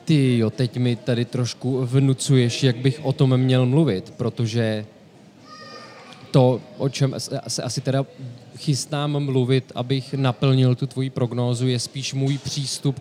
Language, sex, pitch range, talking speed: Czech, male, 120-135 Hz, 145 wpm